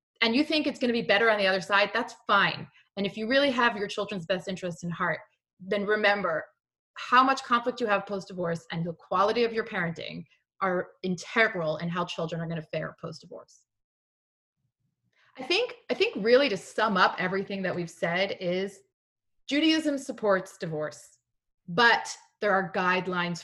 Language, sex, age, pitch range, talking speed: English, female, 30-49, 175-235 Hz, 165 wpm